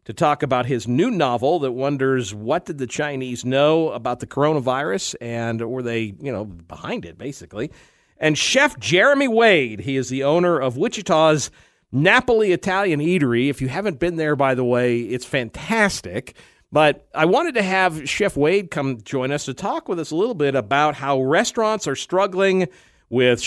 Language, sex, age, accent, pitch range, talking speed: English, male, 50-69, American, 125-170 Hz, 175 wpm